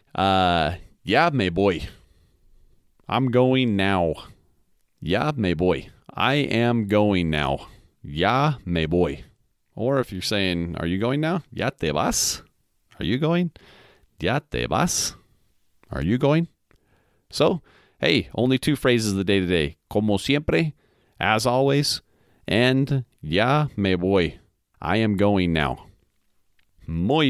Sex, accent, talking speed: male, American, 130 wpm